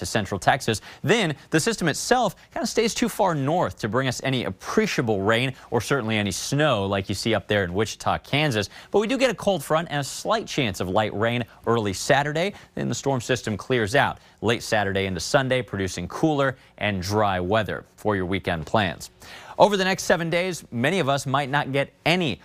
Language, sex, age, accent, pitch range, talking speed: English, male, 30-49, American, 100-150 Hz, 205 wpm